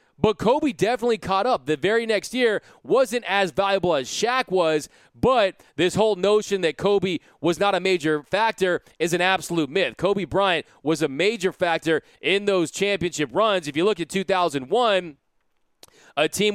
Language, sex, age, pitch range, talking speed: English, male, 30-49, 175-215 Hz, 170 wpm